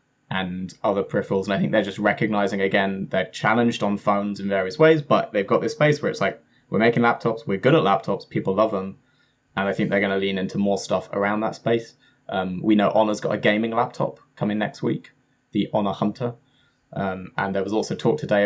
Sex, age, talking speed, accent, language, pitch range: male, 20-39, 225 wpm, British, English, 100-115 Hz